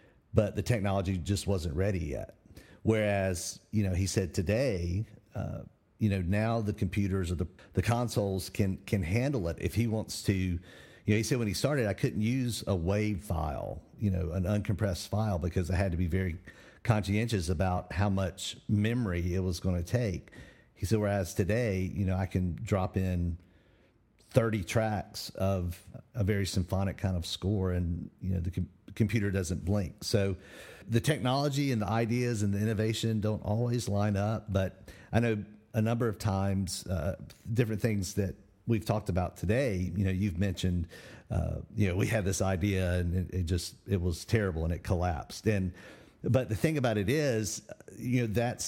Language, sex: English, male